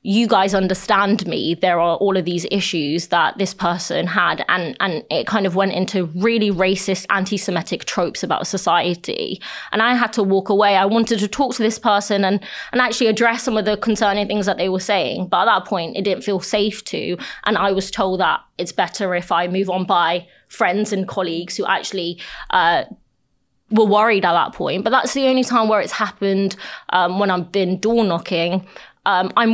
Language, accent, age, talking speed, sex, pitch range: English, British, 20-39, 205 wpm, female, 185-220 Hz